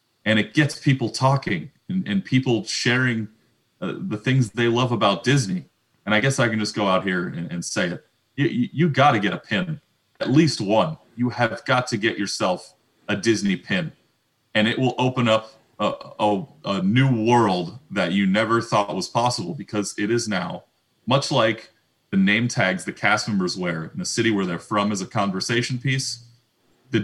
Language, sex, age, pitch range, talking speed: English, male, 30-49, 105-130 Hz, 195 wpm